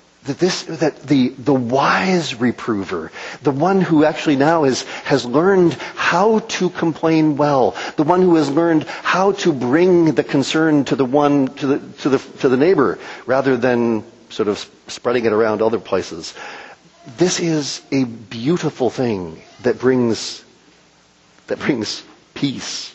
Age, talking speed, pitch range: 40-59, 150 wpm, 125-170 Hz